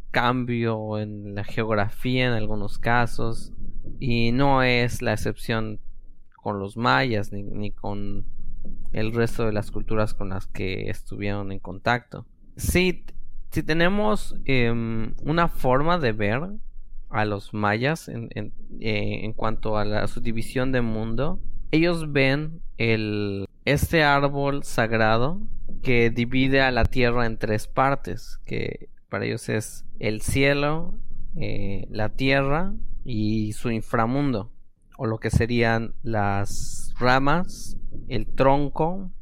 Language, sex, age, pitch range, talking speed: English, male, 20-39, 105-135 Hz, 130 wpm